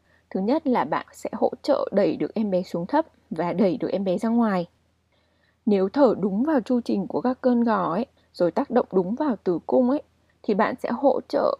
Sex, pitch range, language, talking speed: female, 180-250 Hz, Vietnamese, 230 wpm